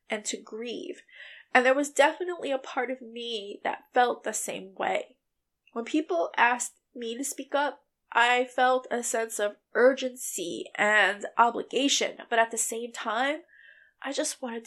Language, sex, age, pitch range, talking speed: English, female, 20-39, 230-280 Hz, 160 wpm